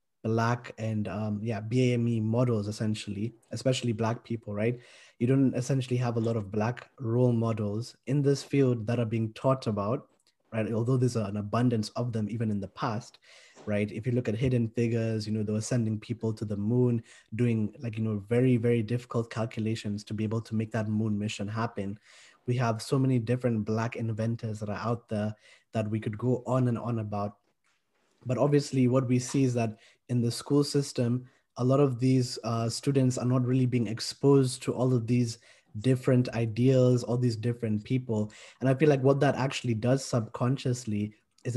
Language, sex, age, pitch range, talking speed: English, male, 20-39, 110-125 Hz, 195 wpm